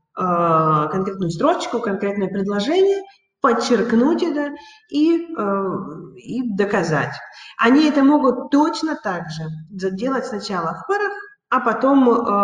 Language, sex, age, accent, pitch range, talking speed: Russian, female, 30-49, native, 185-235 Hz, 100 wpm